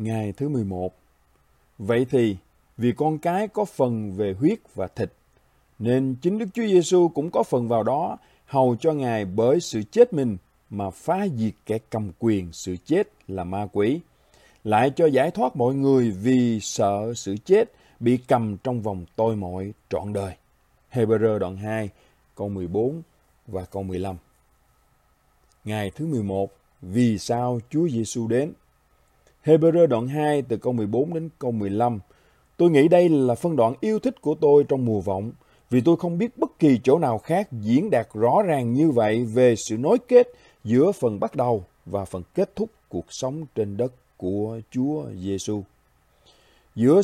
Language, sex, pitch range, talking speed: Vietnamese, male, 105-155 Hz, 170 wpm